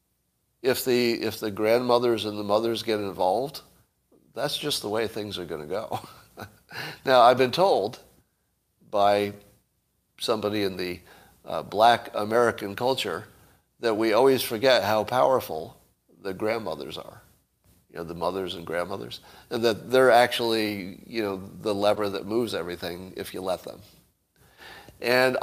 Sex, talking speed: male, 145 wpm